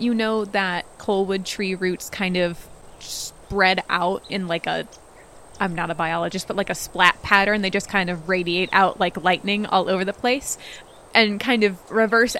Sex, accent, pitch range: female, American, 180-215 Hz